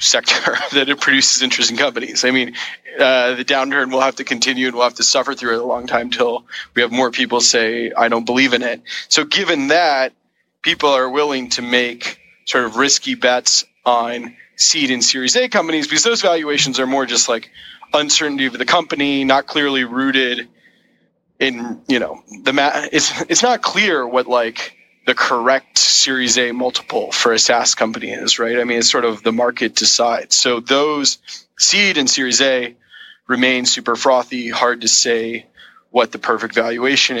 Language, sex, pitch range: English, male, 120-140 Hz